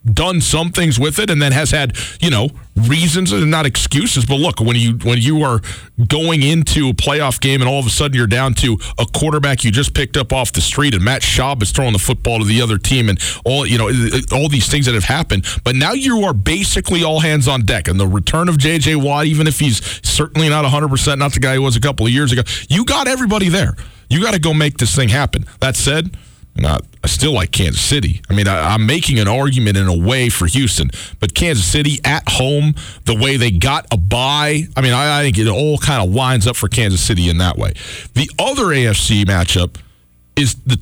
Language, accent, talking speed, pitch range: English, American, 240 wpm, 105-145 Hz